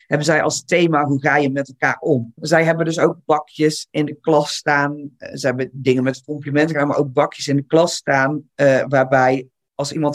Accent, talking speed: Dutch, 205 wpm